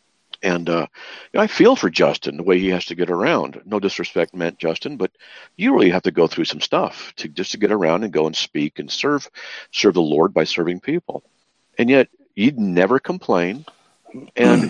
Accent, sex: American, male